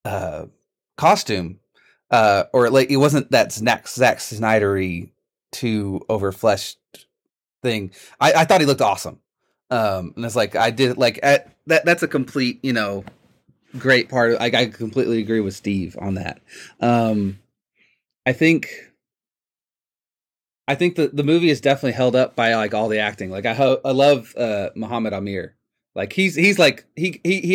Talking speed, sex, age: 165 wpm, male, 30-49